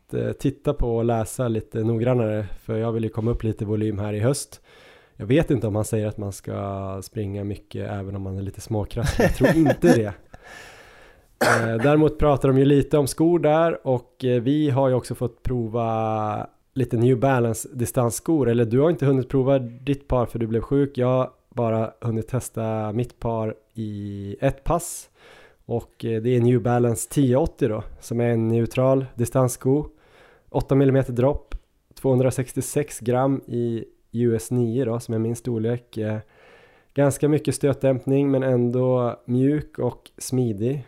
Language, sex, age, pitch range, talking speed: Swedish, male, 20-39, 110-135 Hz, 165 wpm